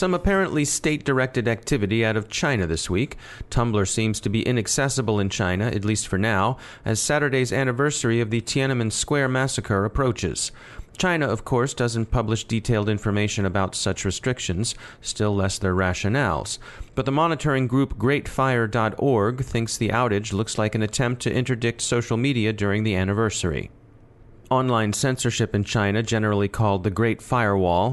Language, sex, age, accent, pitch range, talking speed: English, male, 30-49, American, 105-130 Hz, 155 wpm